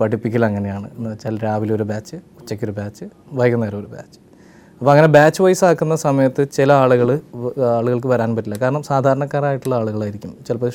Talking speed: 155 wpm